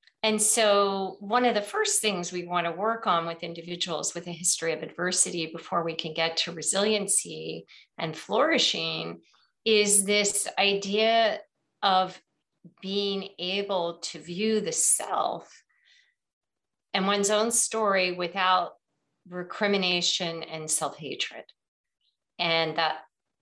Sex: female